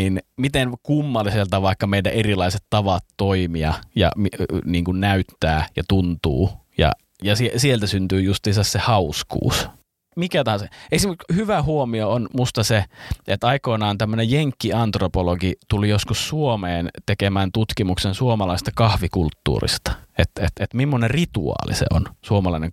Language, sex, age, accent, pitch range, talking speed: Finnish, male, 30-49, native, 90-115 Hz, 120 wpm